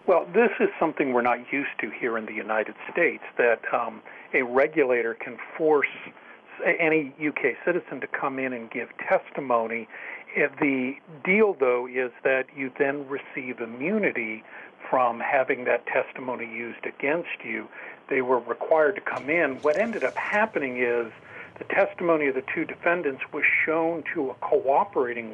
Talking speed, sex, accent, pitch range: 155 wpm, male, American, 120-150 Hz